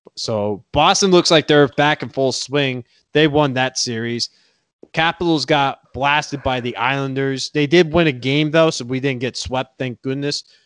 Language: English